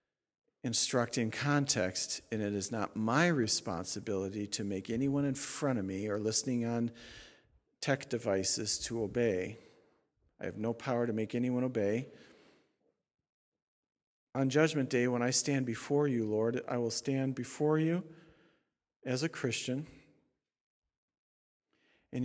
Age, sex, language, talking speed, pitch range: 50-69, male, English, 130 wpm, 110-135 Hz